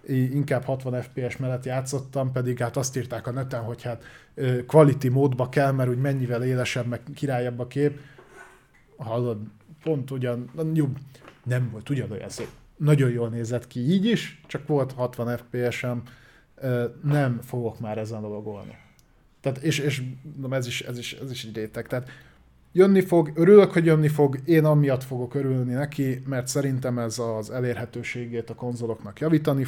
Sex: male